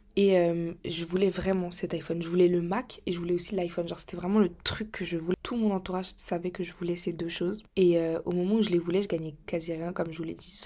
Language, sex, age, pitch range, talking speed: French, female, 20-39, 175-205 Hz, 285 wpm